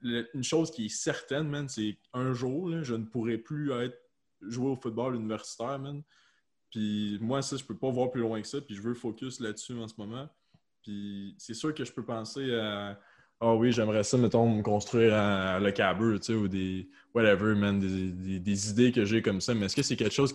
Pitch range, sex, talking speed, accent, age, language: 105-130 Hz, male, 230 wpm, Canadian, 20-39, French